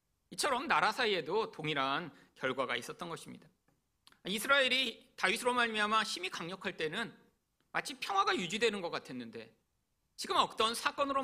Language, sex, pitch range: Korean, male, 165-240 Hz